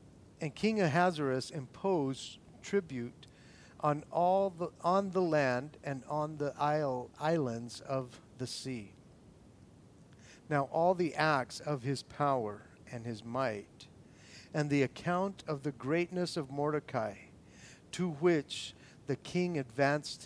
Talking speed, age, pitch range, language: 125 wpm, 50-69, 125-155 Hz, English